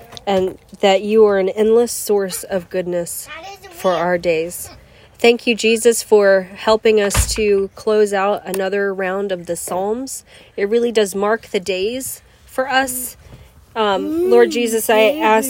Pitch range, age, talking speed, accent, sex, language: 200-235 Hz, 30-49, 150 wpm, American, female, English